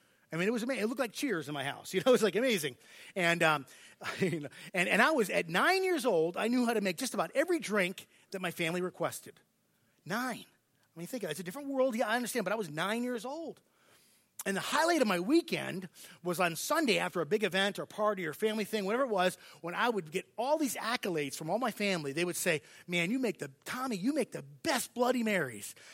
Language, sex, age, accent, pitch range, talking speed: English, male, 30-49, American, 170-245 Hz, 245 wpm